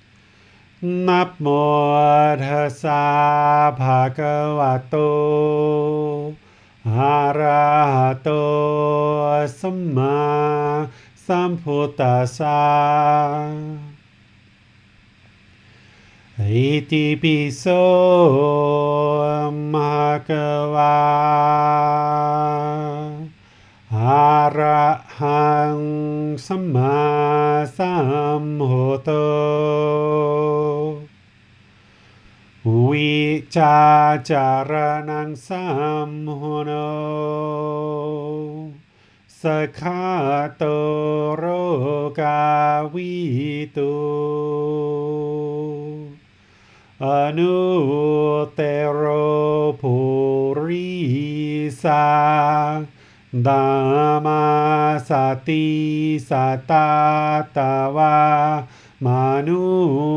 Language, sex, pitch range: English, male, 140-150 Hz